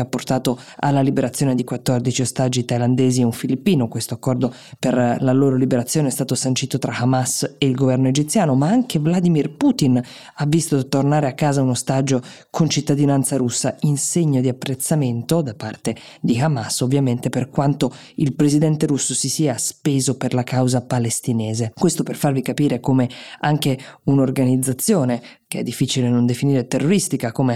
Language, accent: Italian, native